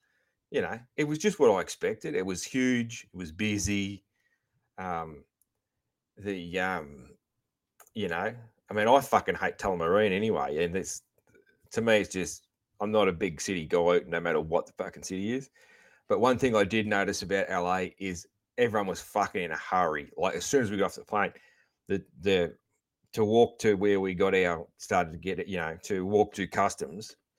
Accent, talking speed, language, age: Australian, 195 wpm, English, 30-49